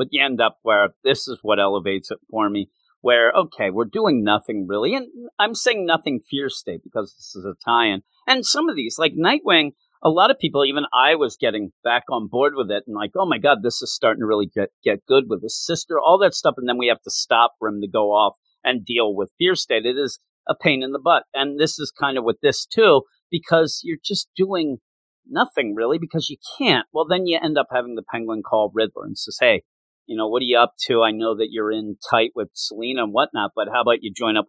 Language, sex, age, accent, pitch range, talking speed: English, male, 40-59, American, 110-165 Hz, 250 wpm